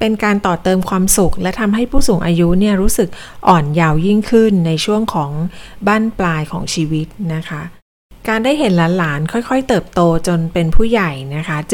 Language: Thai